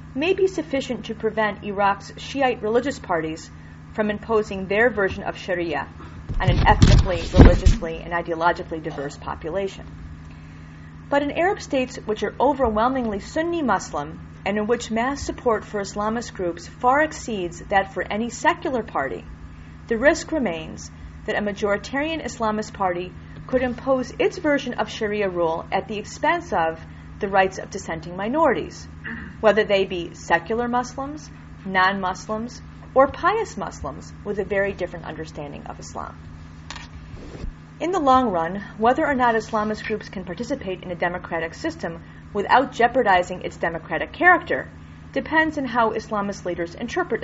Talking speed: 145 wpm